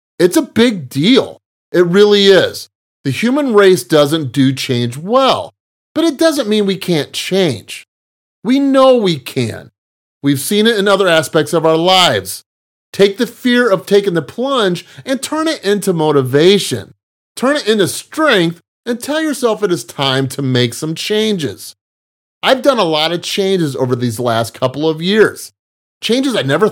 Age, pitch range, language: 30-49, 130-205 Hz, English